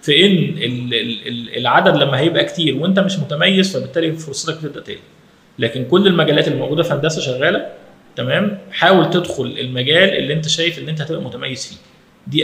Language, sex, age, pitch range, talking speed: Arabic, male, 20-39, 130-175 Hz, 145 wpm